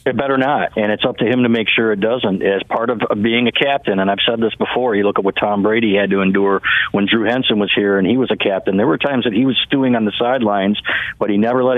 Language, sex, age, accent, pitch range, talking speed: English, male, 50-69, American, 100-115 Hz, 290 wpm